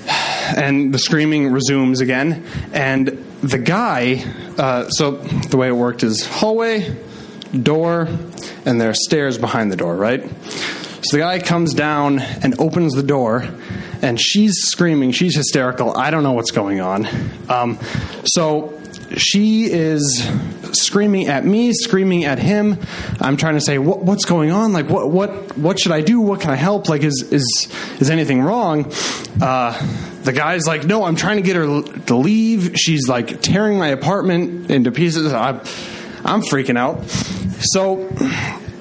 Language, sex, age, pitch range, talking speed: English, male, 20-39, 135-195 Hz, 160 wpm